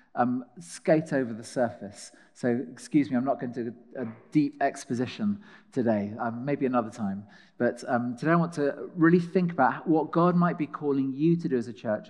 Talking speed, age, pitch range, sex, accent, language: 210 wpm, 40-59, 120-155 Hz, male, British, English